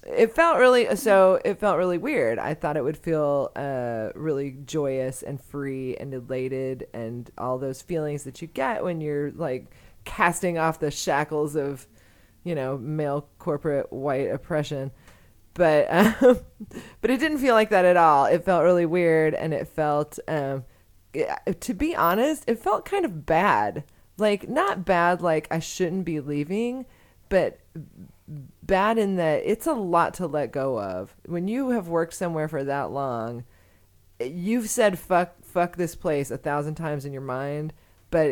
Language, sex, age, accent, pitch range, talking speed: English, female, 30-49, American, 135-180 Hz, 170 wpm